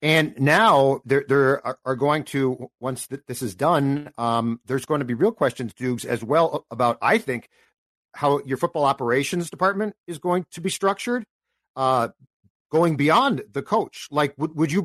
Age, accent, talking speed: 50-69, American, 180 wpm